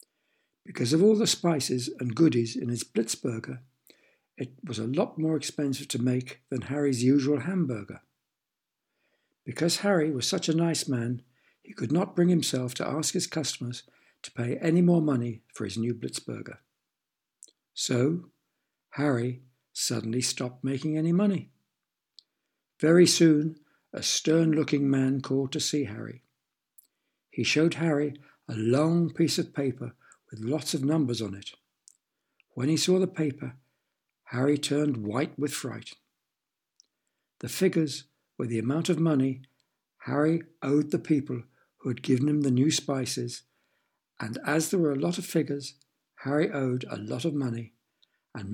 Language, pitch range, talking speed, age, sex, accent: English, 125-155 Hz, 150 wpm, 60-79, male, British